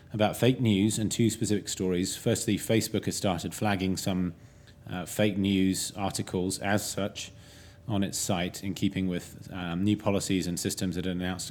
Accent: British